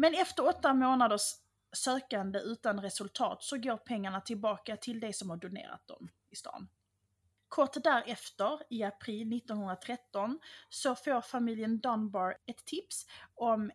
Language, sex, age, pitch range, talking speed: English, female, 30-49, 200-250 Hz, 135 wpm